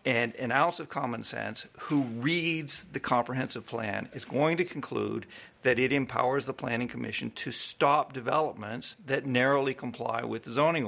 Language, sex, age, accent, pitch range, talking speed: English, male, 50-69, American, 145-205 Hz, 165 wpm